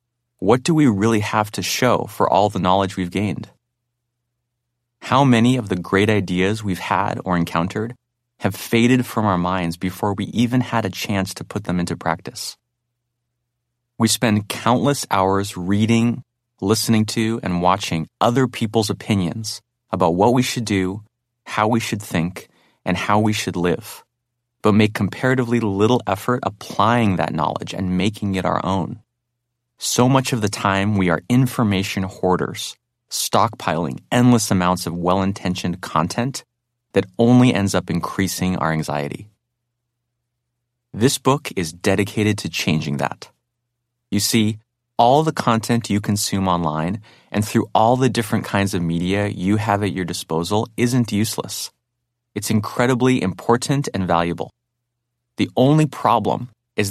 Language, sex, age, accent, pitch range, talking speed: English, male, 30-49, American, 95-120 Hz, 145 wpm